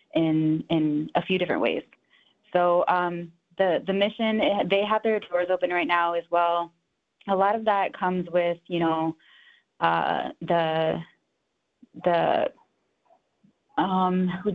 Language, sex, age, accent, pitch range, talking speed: English, female, 20-39, American, 160-185 Hz, 130 wpm